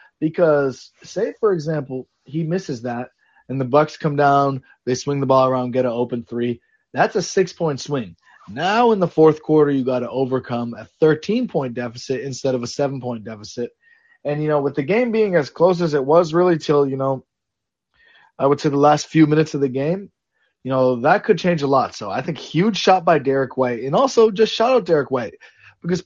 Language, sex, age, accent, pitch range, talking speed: English, male, 20-39, American, 125-160 Hz, 210 wpm